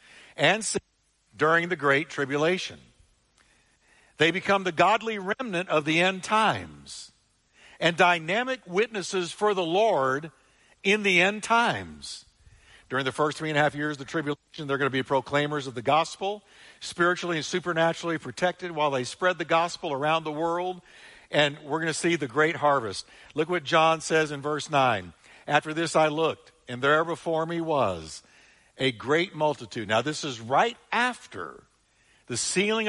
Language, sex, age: English, male, 60-79